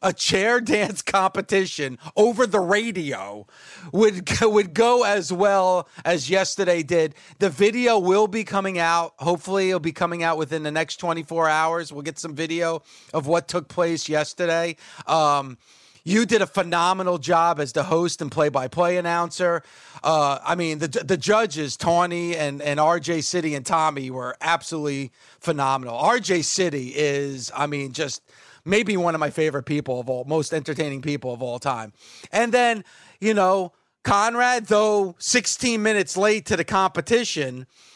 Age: 30-49